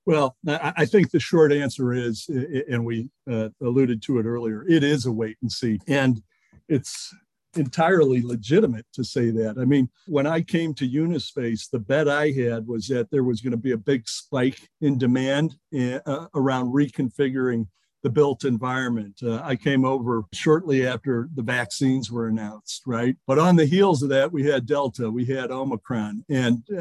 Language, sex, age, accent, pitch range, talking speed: English, male, 60-79, American, 120-145 Hz, 170 wpm